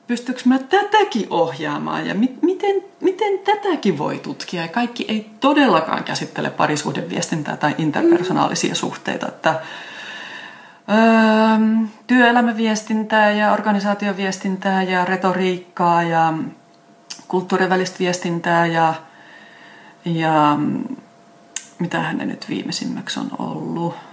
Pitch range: 165-240 Hz